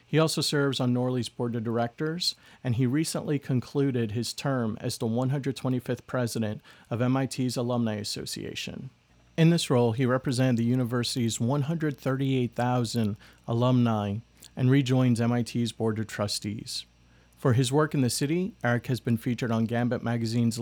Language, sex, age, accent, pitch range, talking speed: English, male, 40-59, American, 115-130 Hz, 145 wpm